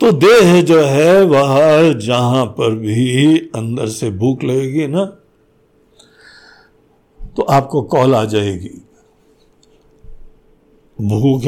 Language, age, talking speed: Hindi, 60-79, 95 wpm